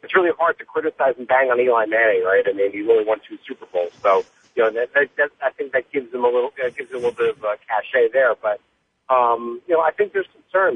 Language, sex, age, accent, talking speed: English, male, 50-69, American, 280 wpm